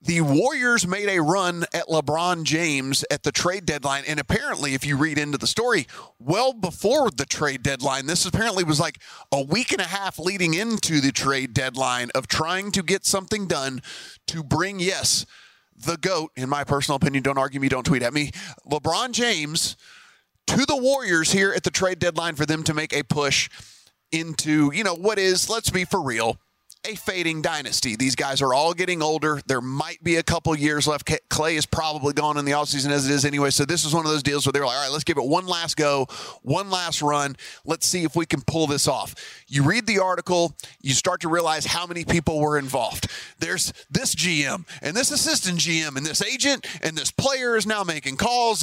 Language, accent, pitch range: English, American, 145-185 Hz